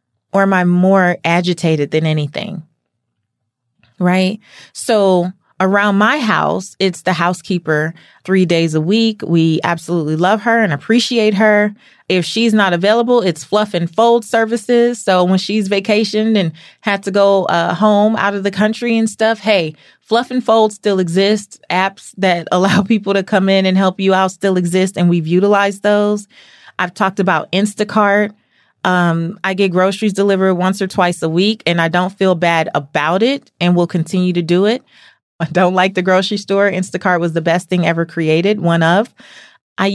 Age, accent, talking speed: 30-49, American, 175 wpm